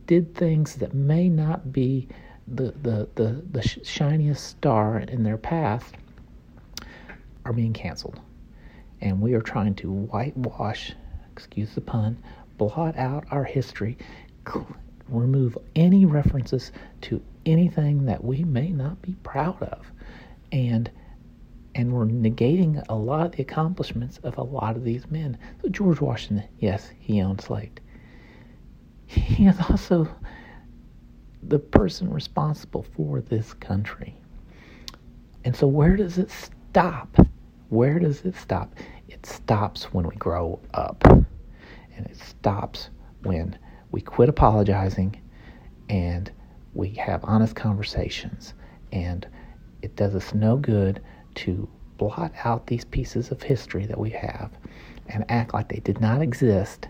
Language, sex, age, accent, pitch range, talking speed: English, male, 50-69, American, 105-145 Hz, 135 wpm